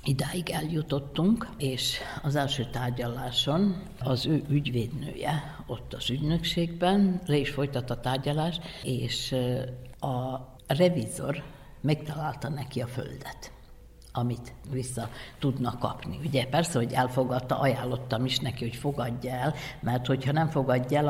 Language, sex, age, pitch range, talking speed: Hungarian, female, 60-79, 125-150 Hz, 120 wpm